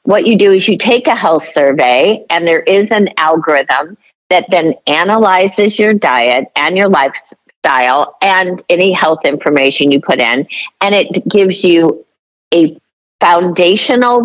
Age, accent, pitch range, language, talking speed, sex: 50-69, American, 160-205 Hz, English, 145 wpm, female